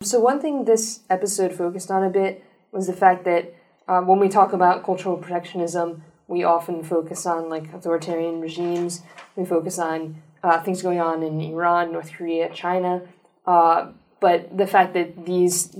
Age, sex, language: 20-39, female, English